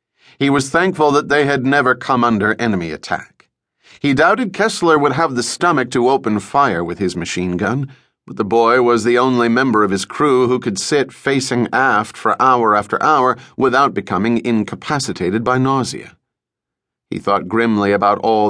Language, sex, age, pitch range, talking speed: English, male, 40-59, 105-130 Hz, 175 wpm